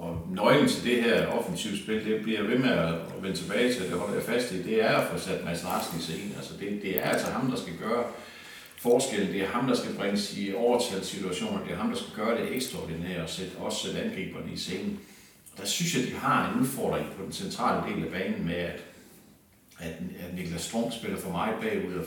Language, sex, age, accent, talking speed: Danish, male, 60-79, native, 230 wpm